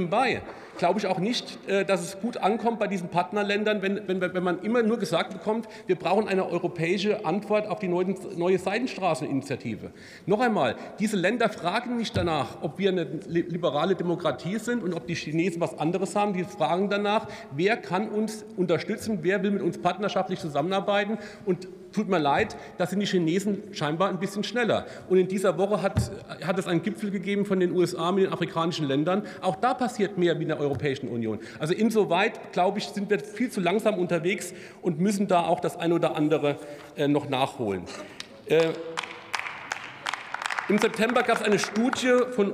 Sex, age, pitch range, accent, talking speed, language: male, 40-59, 170-205 Hz, German, 180 wpm, German